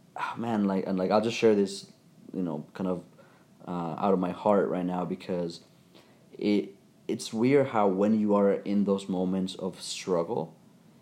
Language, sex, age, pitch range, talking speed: English, male, 30-49, 95-115 Hz, 175 wpm